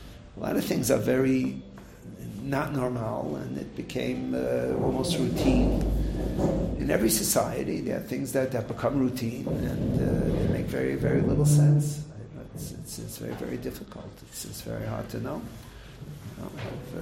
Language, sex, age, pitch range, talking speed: English, male, 50-69, 110-145 Hz, 165 wpm